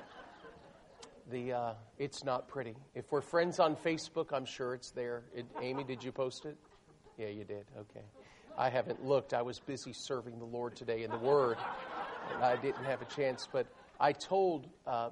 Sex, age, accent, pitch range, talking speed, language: male, 50-69, American, 125-165 Hz, 185 wpm, English